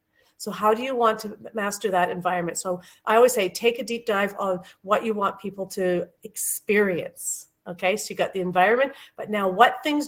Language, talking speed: English, 200 wpm